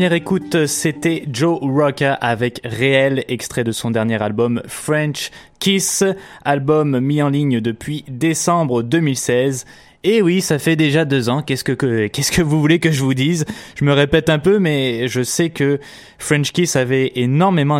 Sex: male